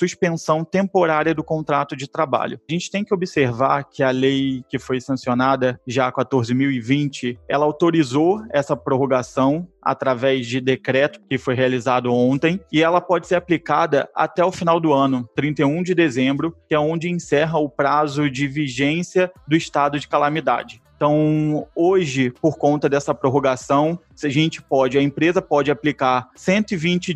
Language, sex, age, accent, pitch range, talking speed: Portuguese, male, 20-39, Brazilian, 135-170 Hz, 150 wpm